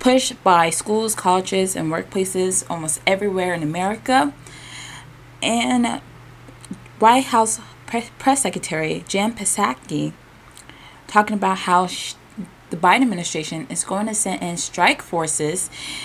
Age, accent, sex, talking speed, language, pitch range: 20-39, American, female, 110 wpm, English, 150-210 Hz